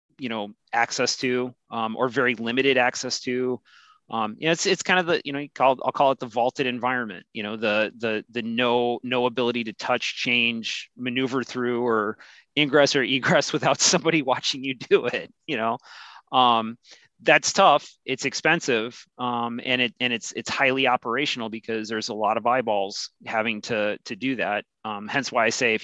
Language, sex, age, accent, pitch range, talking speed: English, male, 30-49, American, 115-130 Hz, 195 wpm